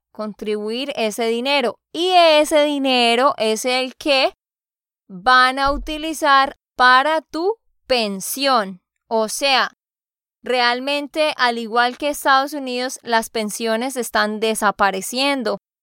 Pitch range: 230-280 Hz